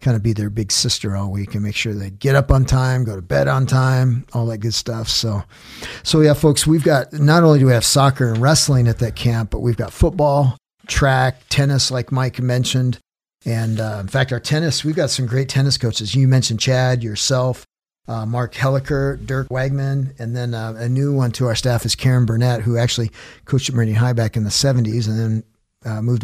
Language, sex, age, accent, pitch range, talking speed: English, male, 50-69, American, 110-130 Hz, 225 wpm